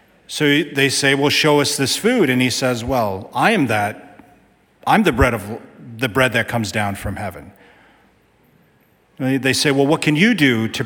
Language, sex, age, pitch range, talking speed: English, male, 40-59, 115-145 Hz, 195 wpm